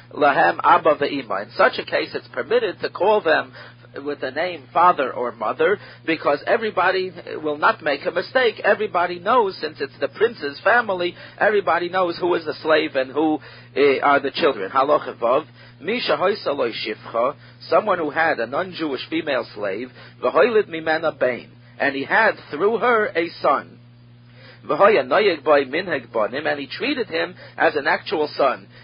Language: English